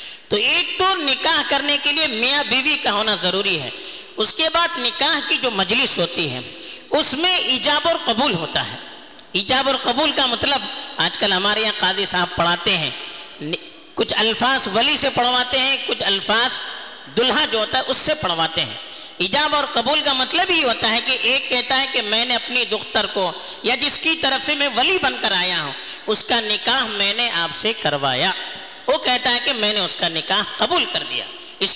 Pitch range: 205-290 Hz